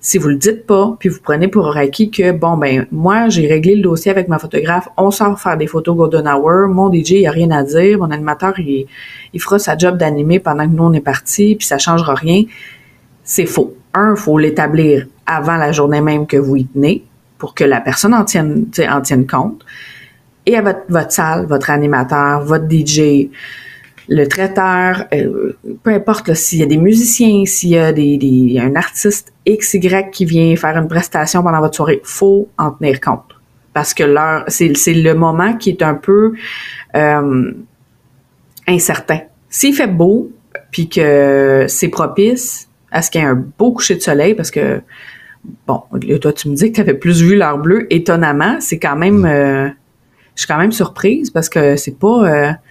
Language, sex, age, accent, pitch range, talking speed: French, female, 30-49, Canadian, 145-195 Hz, 200 wpm